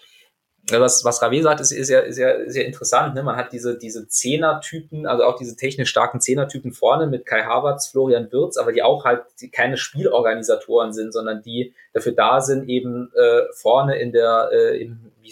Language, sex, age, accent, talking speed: German, male, 20-39, German, 205 wpm